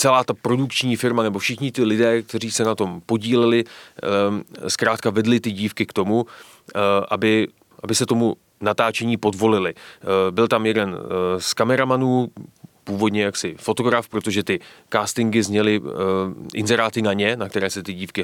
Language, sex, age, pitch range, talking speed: Czech, male, 30-49, 100-120 Hz, 150 wpm